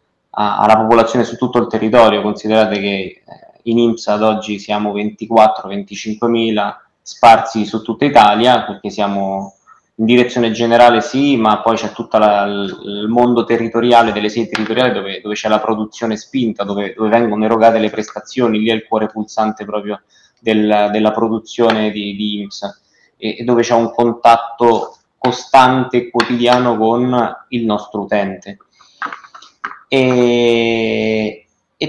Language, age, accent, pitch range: Italian, 20-39, native, 105-125 Hz